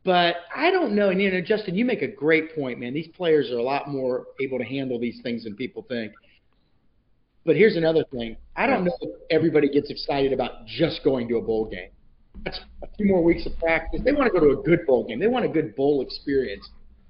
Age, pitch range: 40-59, 125-160 Hz